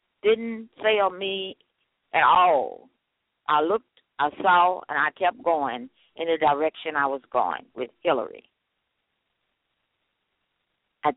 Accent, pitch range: American, 170-215 Hz